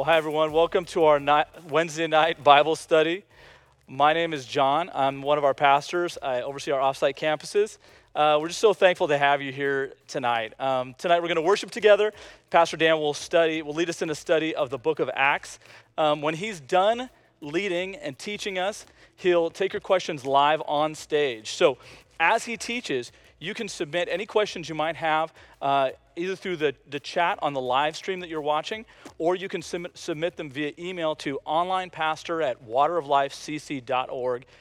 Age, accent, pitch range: 40-59, American, 140-175 Hz